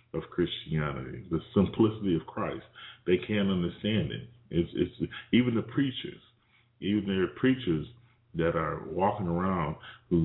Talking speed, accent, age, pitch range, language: 135 wpm, American, 30-49, 85-120 Hz, English